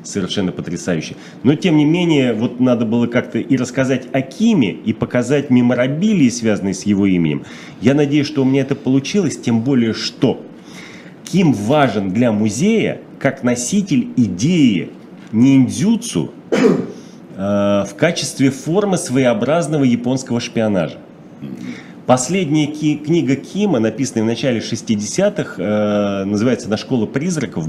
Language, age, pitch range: Russian, 30-49, 100-145 Hz